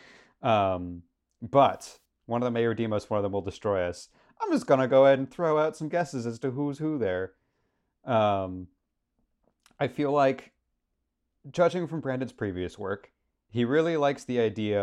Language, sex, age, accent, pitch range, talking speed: English, male, 30-49, American, 95-130 Hz, 180 wpm